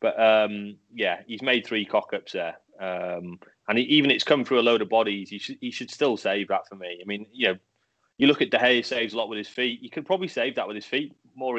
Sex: male